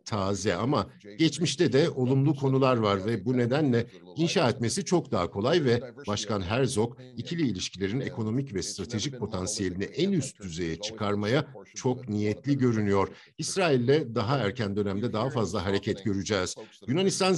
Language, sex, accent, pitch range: Turkish, male, native, 105-140 Hz